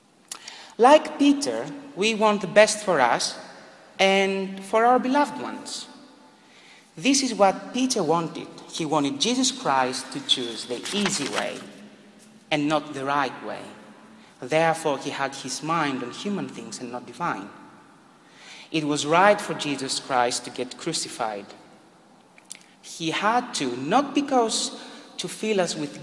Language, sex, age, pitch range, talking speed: English, male, 40-59, 145-220 Hz, 140 wpm